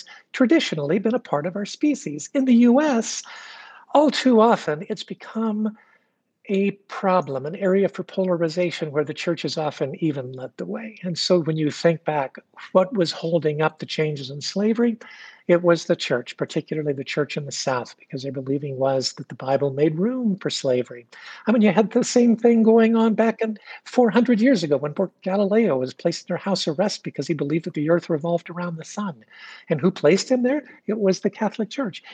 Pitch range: 160-230 Hz